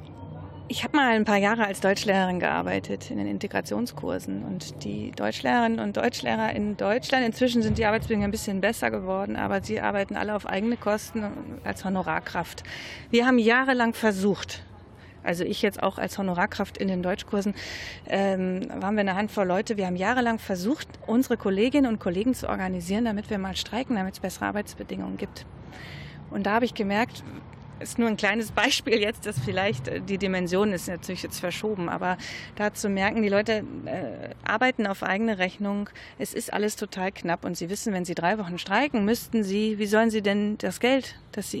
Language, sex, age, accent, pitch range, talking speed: German, female, 30-49, German, 185-230 Hz, 185 wpm